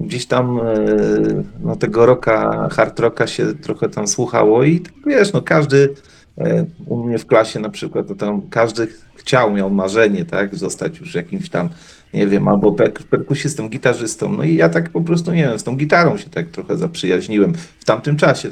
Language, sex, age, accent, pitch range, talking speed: Polish, male, 40-59, native, 105-145 Hz, 190 wpm